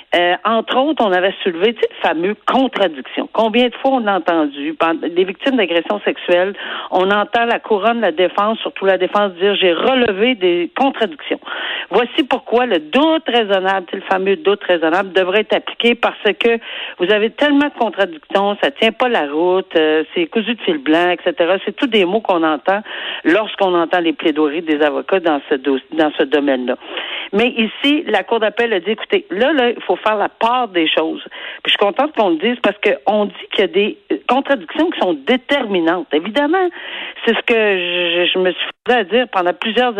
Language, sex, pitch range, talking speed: French, female, 180-245 Hz, 195 wpm